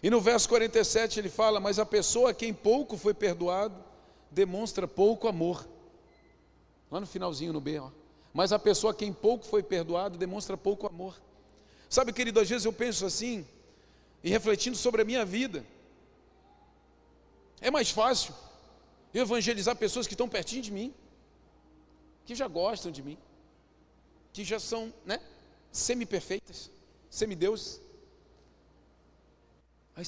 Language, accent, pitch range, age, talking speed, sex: Portuguese, Brazilian, 135-215 Hz, 40-59, 140 wpm, male